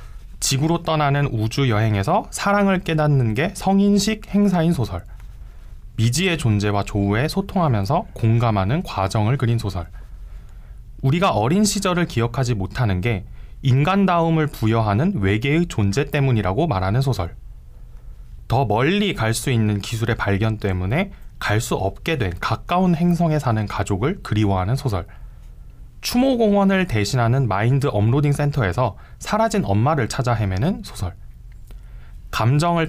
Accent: native